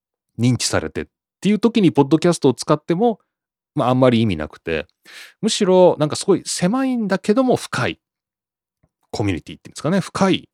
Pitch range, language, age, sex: 95-155 Hz, Japanese, 30-49, male